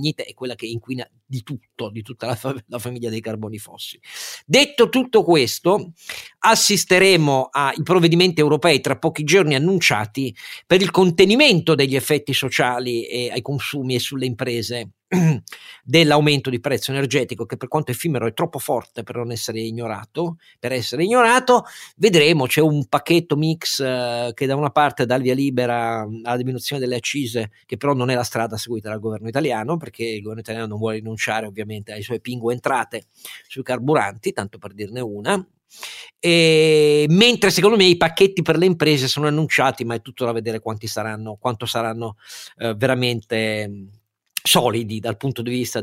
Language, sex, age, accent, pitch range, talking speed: Italian, male, 50-69, native, 115-155 Hz, 170 wpm